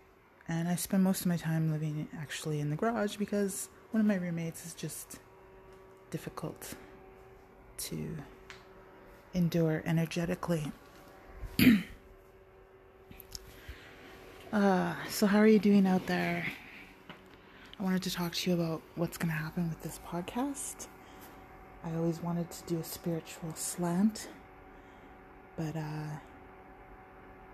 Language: English